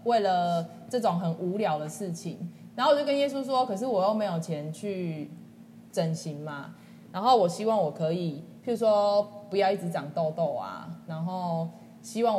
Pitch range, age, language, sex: 170-225 Hz, 20-39, Chinese, female